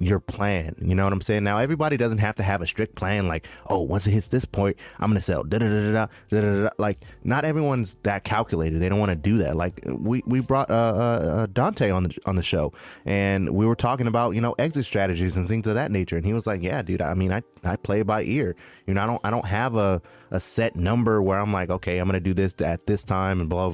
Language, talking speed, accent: English, 260 wpm, American